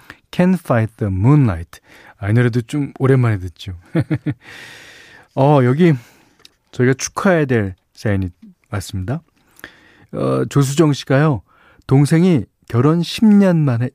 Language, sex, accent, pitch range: Korean, male, native, 110-155 Hz